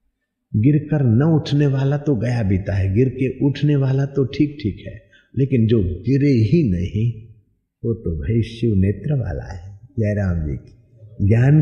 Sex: male